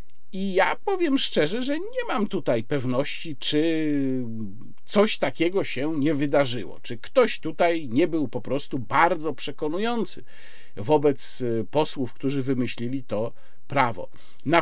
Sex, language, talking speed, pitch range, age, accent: male, Polish, 125 wpm, 130-190 Hz, 50-69, native